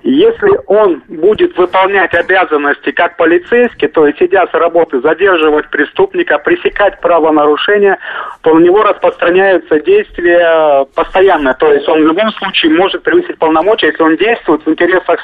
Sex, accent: male, native